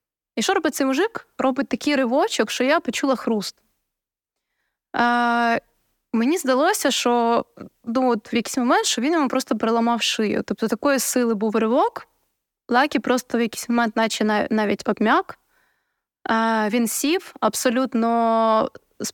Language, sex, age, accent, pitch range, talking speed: Ukrainian, female, 20-39, native, 230-290 Hz, 140 wpm